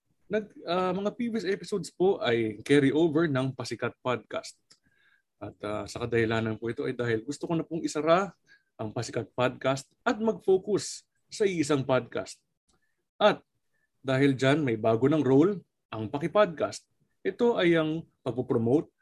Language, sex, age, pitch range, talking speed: Filipino, male, 20-39, 120-195 Hz, 150 wpm